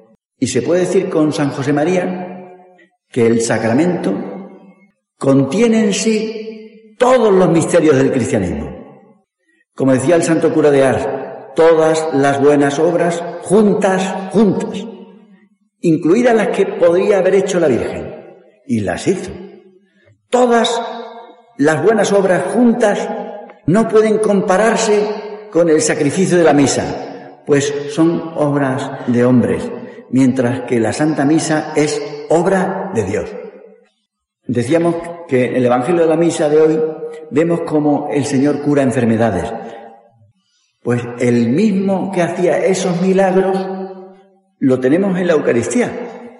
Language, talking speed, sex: Spanish, 130 wpm, male